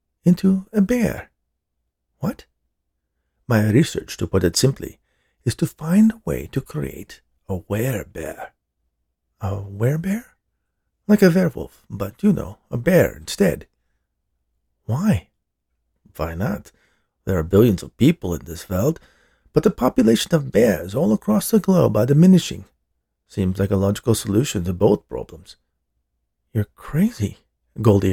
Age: 50-69